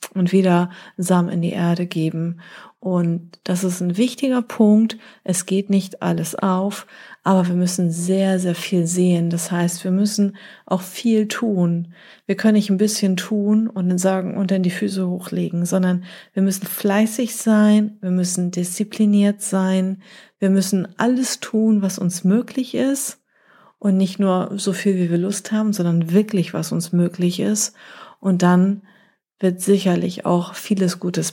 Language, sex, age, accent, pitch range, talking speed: German, female, 30-49, German, 175-205 Hz, 165 wpm